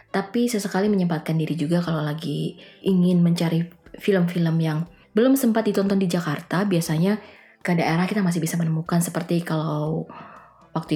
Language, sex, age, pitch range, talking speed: Indonesian, female, 20-39, 165-215 Hz, 140 wpm